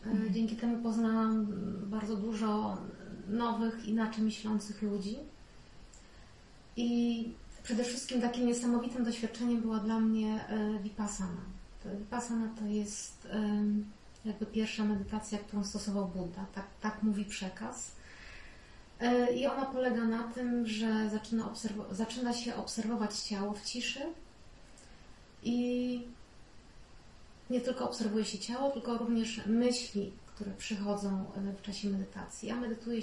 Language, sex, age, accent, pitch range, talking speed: Polish, female, 30-49, native, 210-235 Hz, 115 wpm